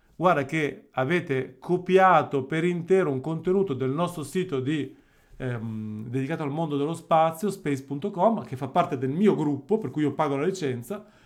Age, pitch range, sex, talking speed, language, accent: 40-59, 130-175 Hz, male, 165 wpm, Italian, native